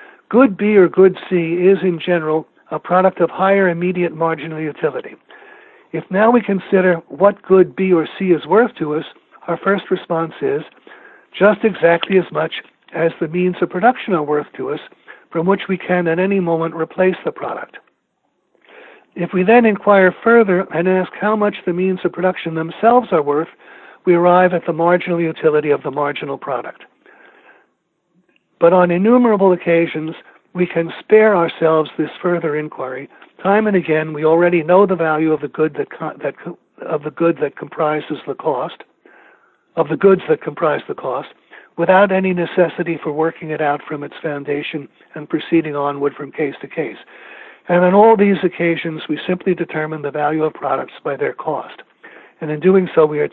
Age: 60-79